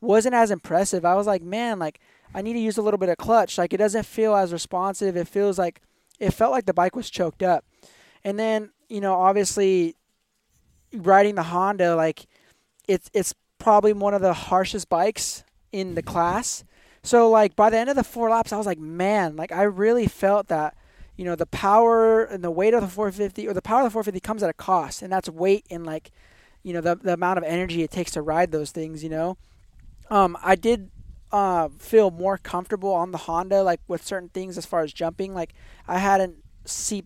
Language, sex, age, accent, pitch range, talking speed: English, male, 20-39, American, 170-205 Hz, 215 wpm